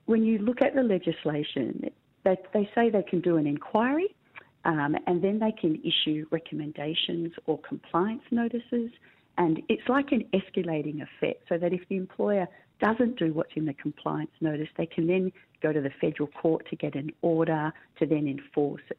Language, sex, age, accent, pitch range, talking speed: English, female, 40-59, Australian, 150-215 Hz, 180 wpm